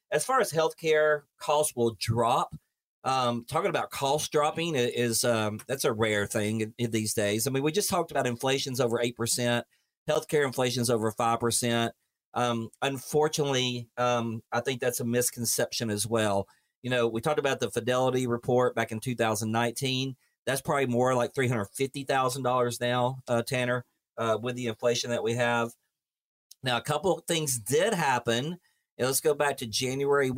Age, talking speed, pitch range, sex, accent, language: 40-59, 165 wpm, 115-140 Hz, male, American, English